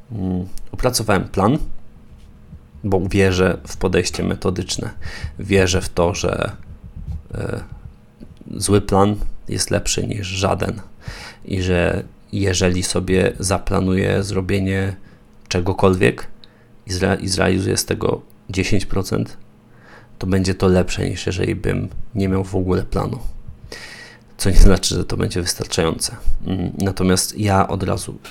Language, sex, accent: Polish, male, native